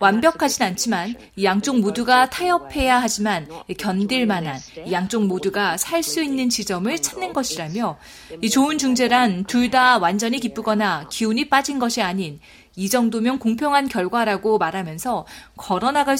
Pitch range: 205-280 Hz